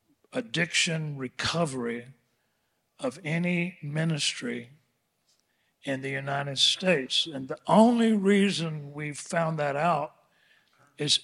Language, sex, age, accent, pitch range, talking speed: English, male, 60-79, American, 130-160 Hz, 95 wpm